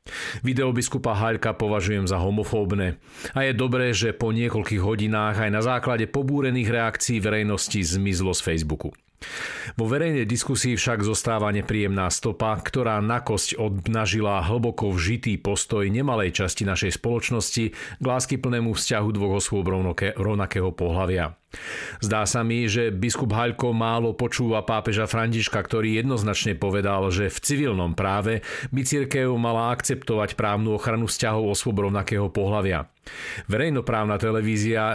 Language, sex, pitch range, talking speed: Slovak, male, 100-120 Hz, 125 wpm